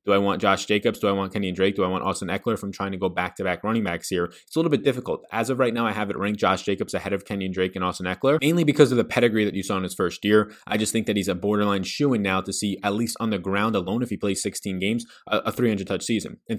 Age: 20-39